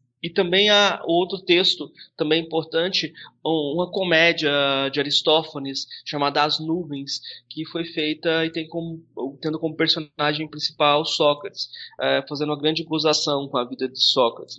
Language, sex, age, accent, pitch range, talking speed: Portuguese, male, 20-39, Brazilian, 140-165 Hz, 140 wpm